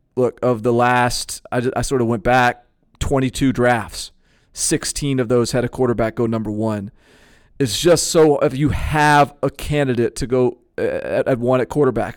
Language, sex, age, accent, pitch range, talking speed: English, male, 40-59, American, 115-135 Hz, 180 wpm